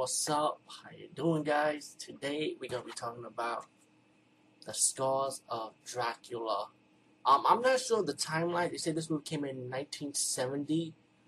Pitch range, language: 125-150 Hz, English